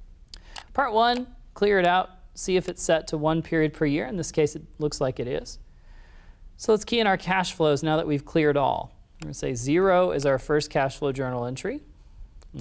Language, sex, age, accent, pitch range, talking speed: English, male, 40-59, American, 130-190 Hz, 225 wpm